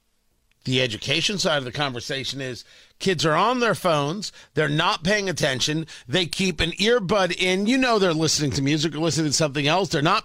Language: English